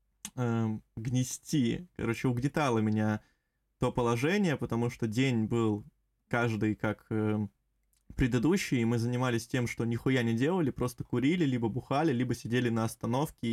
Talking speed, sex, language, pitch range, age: 135 wpm, male, Russian, 115-150 Hz, 20-39